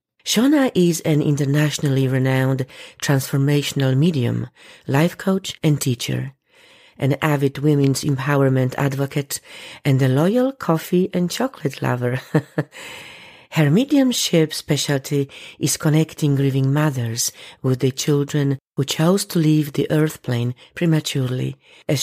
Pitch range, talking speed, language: 135-170 Hz, 115 wpm, English